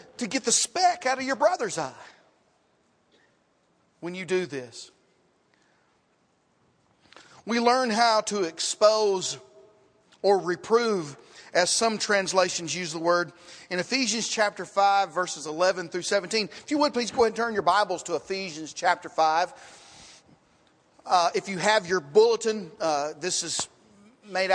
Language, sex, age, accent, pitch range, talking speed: English, male, 40-59, American, 170-215 Hz, 140 wpm